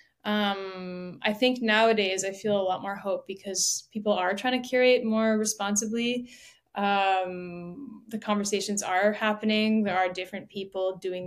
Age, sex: 10-29, female